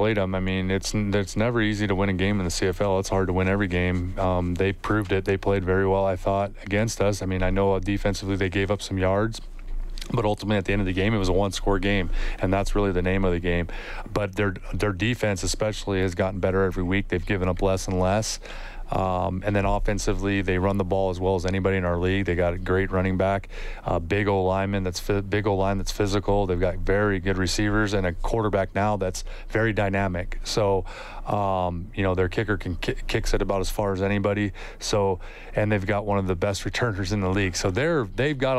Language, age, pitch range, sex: English, 30-49, 95-105 Hz, male